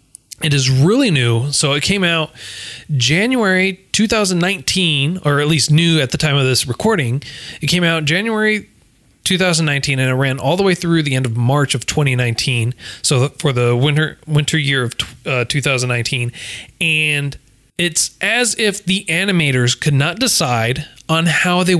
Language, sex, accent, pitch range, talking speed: English, male, American, 140-185 Hz, 160 wpm